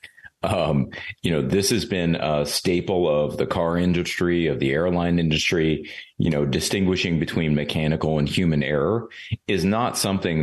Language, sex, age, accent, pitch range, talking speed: English, male, 40-59, American, 75-95 Hz, 155 wpm